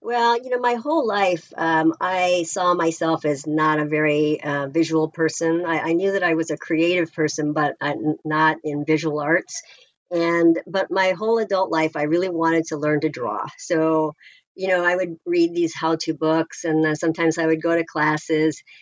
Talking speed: 195 wpm